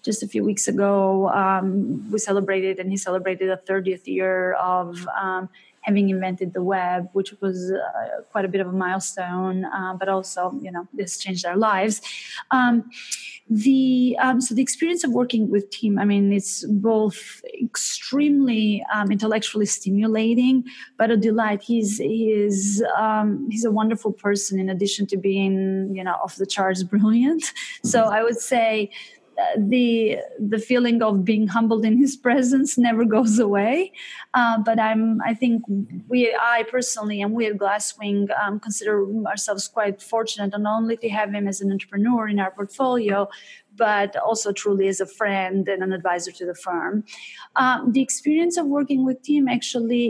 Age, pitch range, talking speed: 30-49, 195-235 Hz, 170 wpm